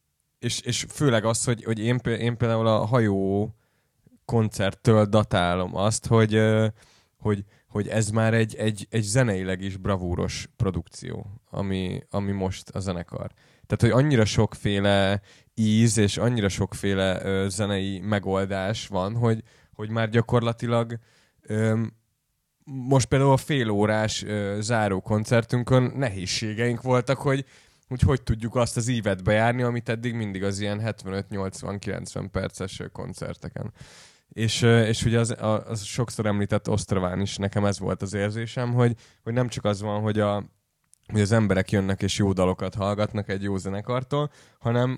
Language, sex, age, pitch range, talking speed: Hungarian, male, 20-39, 100-120 Hz, 140 wpm